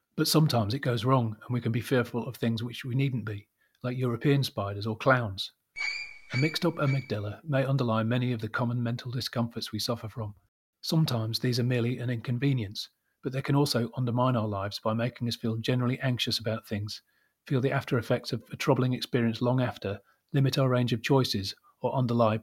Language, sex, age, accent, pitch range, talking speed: English, male, 40-59, British, 110-130 Hz, 195 wpm